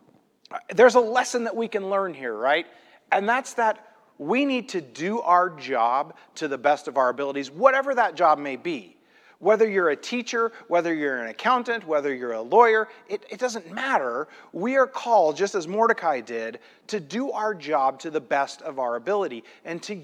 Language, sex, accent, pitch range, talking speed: English, male, American, 145-225 Hz, 190 wpm